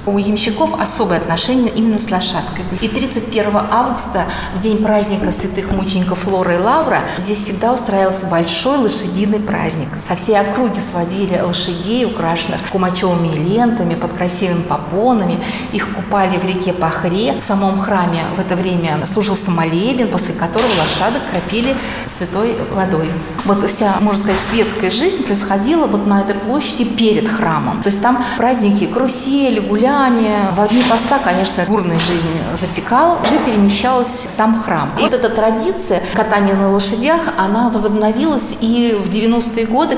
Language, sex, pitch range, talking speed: Russian, female, 180-230 Hz, 145 wpm